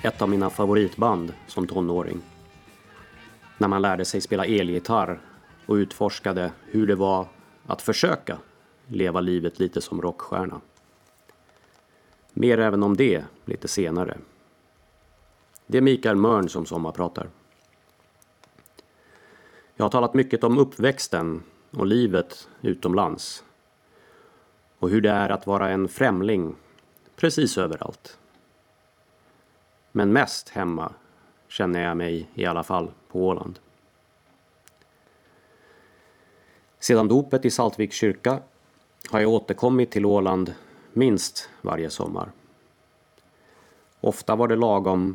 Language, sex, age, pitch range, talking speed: Swedish, male, 30-49, 90-110 Hz, 110 wpm